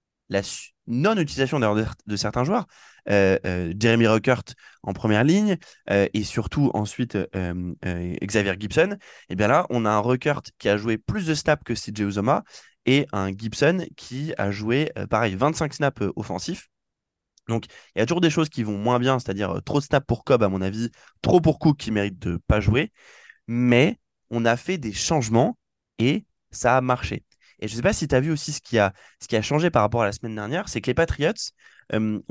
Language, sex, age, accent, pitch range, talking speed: French, male, 20-39, French, 105-140 Hz, 215 wpm